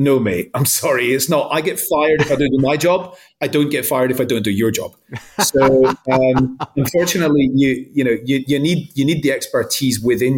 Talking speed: 225 wpm